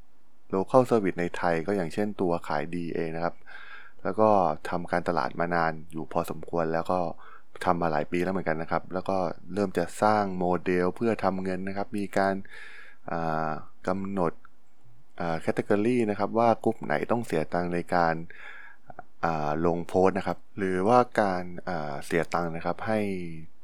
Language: Thai